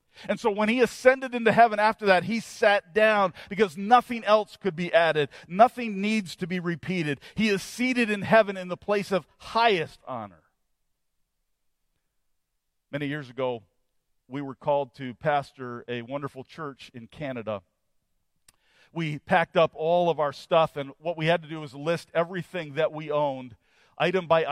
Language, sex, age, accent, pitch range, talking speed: English, male, 40-59, American, 135-180 Hz, 165 wpm